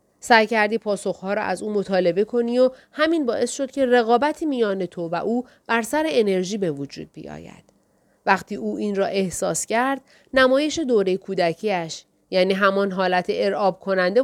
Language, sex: Persian, female